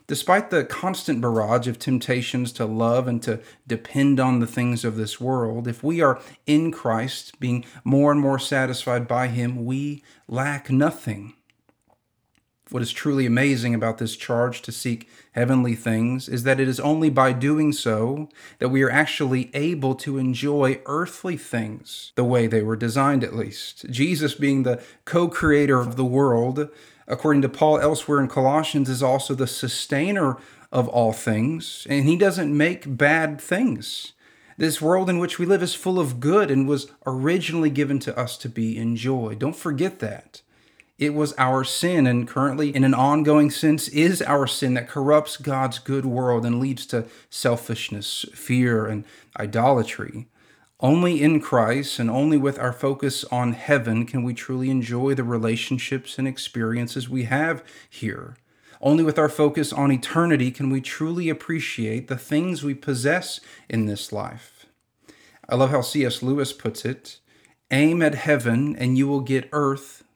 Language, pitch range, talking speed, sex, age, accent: English, 120-150 Hz, 165 wpm, male, 40-59, American